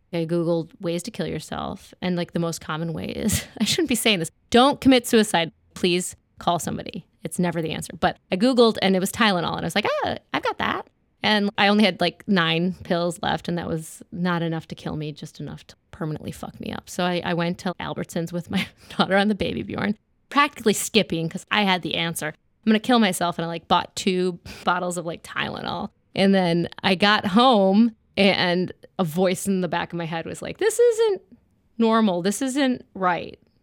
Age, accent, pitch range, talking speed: 20-39, American, 170-210 Hz, 215 wpm